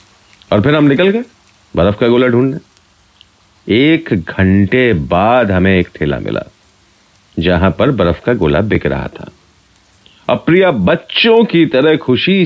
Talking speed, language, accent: 145 wpm, Hindi, native